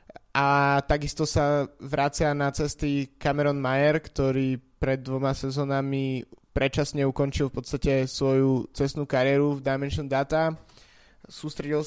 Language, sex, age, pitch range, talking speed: Slovak, male, 20-39, 130-145 Hz, 115 wpm